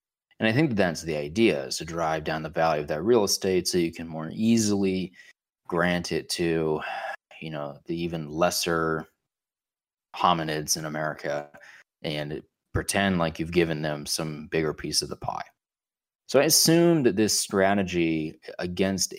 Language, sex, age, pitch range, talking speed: English, male, 30-49, 80-100 Hz, 160 wpm